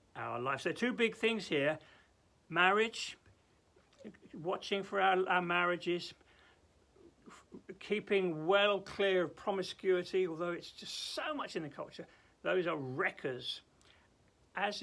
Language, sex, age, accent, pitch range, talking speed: English, male, 60-79, British, 130-195 Hz, 115 wpm